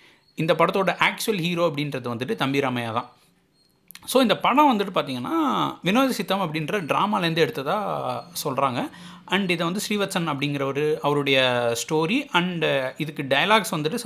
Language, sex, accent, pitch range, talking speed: Tamil, male, native, 140-205 Hz, 130 wpm